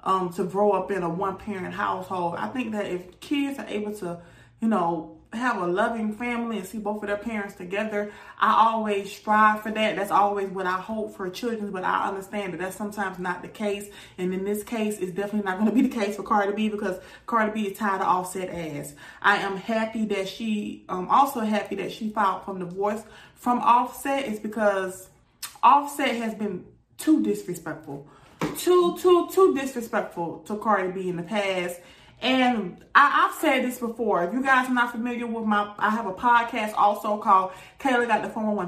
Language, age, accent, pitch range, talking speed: English, 30-49, American, 190-235 Hz, 200 wpm